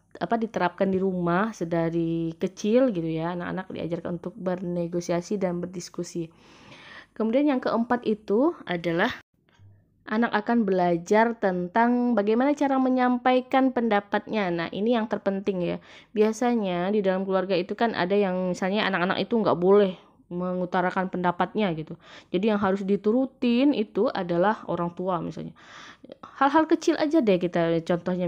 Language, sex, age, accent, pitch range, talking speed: Indonesian, female, 20-39, native, 180-230 Hz, 135 wpm